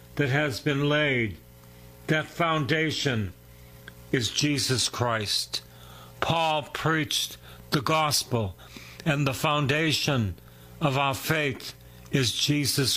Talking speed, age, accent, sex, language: 95 wpm, 60-79, American, male, English